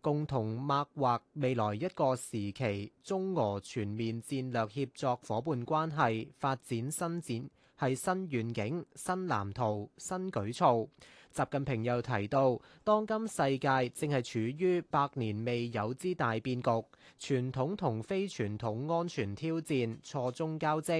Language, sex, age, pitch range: Chinese, male, 20-39, 115-160 Hz